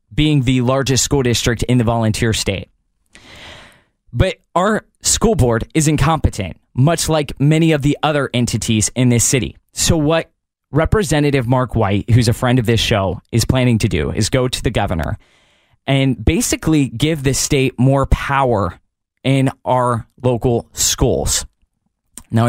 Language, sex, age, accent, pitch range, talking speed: English, male, 20-39, American, 120-155 Hz, 150 wpm